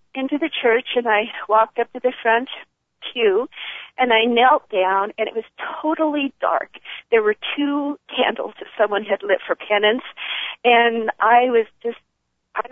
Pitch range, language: 235-290 Hz, English